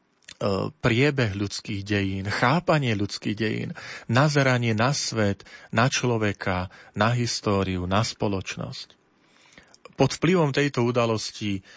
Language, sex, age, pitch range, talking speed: Slovak, male, 40-59, 105-125 Hz, 95 wpm